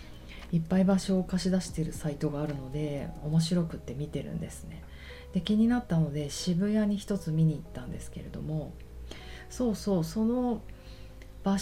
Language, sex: Japanese, female